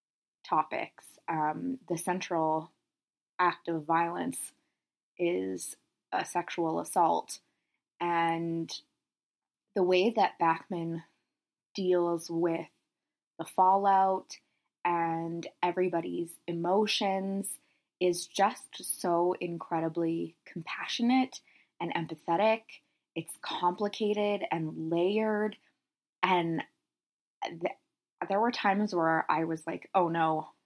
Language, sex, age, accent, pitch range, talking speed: English, female, 20-39, American, 165-195 Hz, 90 wpm